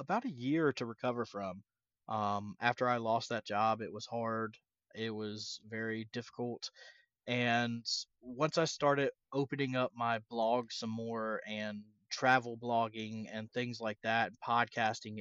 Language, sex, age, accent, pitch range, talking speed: English, male, 30-49, American, 110-135 Hz, 145 wpm